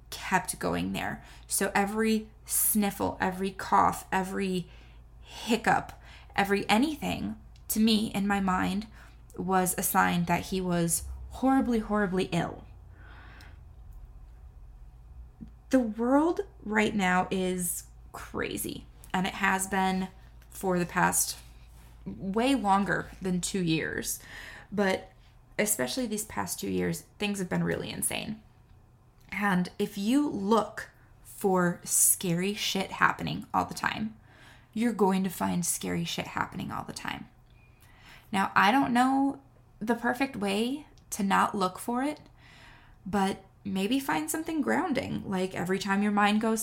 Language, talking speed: English, 125 wpm